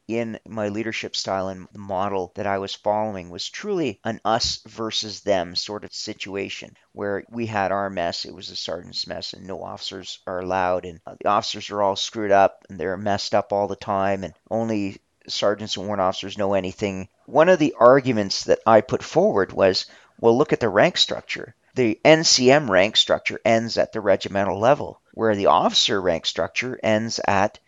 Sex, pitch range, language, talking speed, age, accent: male, 100-125 Hz, English, 190 wpm, 40-59, American